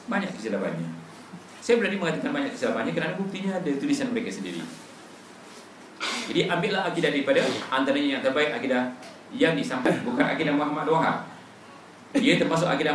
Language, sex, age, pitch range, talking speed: Malay, male, 40-59, 150-245 Hz, 140 wpm